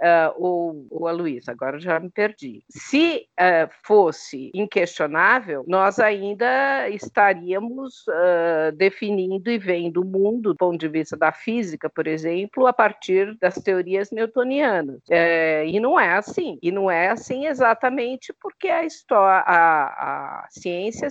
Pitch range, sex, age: 170-235 Hz, female, 50-69